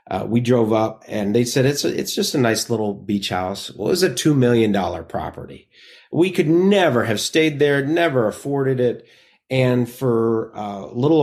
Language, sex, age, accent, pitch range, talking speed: English, male, 30-49, American, 105-135 Hz, 200 wpm